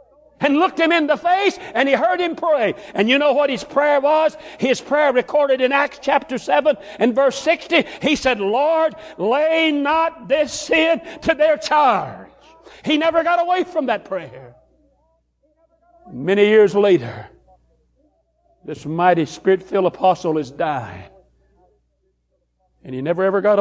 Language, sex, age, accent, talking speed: English, male, 60-79, American, 150 wpm